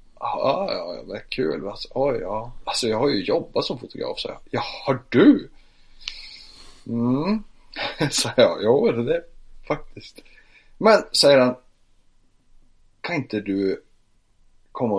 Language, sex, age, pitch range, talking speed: Swedish, male, 30-49, 100-145 Hz, 150 wpm